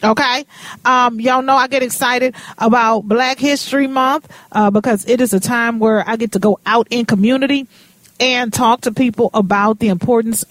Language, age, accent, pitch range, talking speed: English, 40-59, American, 205-255 Hz, 185 wpm